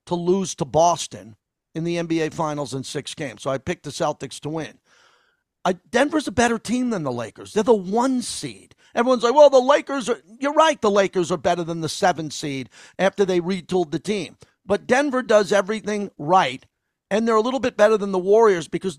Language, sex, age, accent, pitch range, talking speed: English, male, 50-69, American, 160-215 Hz, 205 wpm